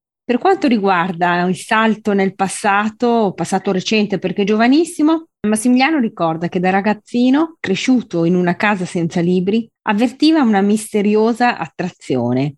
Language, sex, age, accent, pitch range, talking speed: Italian, female, 30-49, native, 170-225 Hz, 125 wpm